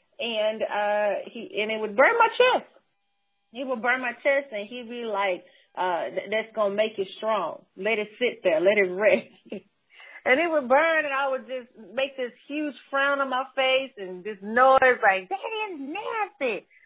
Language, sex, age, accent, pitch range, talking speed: English, female, 40-59, American, 200-275 Hz, 190 wpm